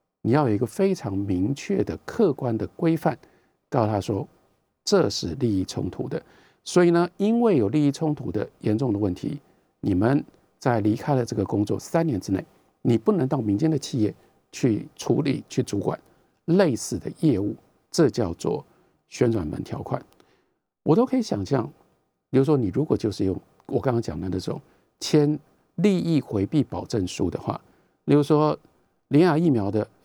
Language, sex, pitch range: Chinese, male, 115-170 Hz